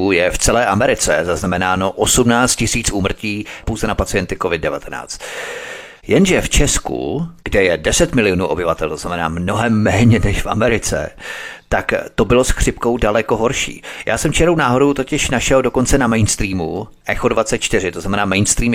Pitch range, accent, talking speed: 100-120 Hz, native, 155 wpm